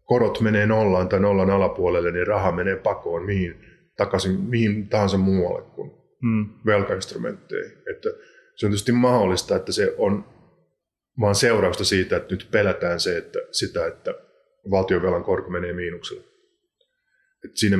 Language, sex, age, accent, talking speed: Finnish, male, 30-49, native, 135 wpm